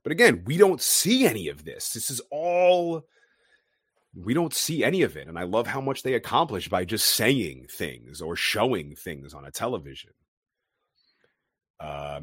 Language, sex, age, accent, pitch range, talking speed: English, male, 30-49, American, 80-100 Hz, 170 wpm